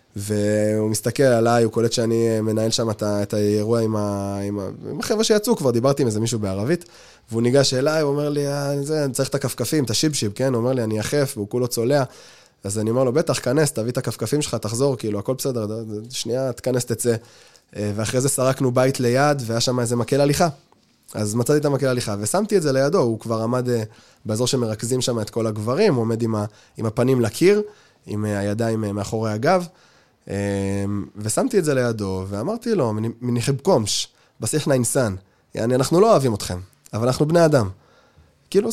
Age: 20-39